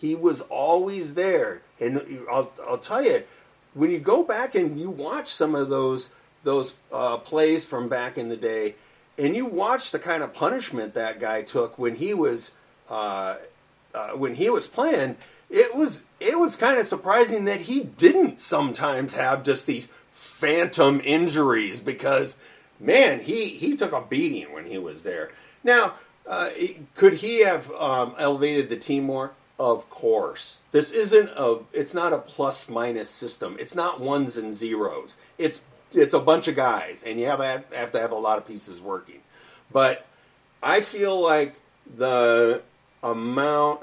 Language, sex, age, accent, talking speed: English, male, 40-59, American, 170 wpm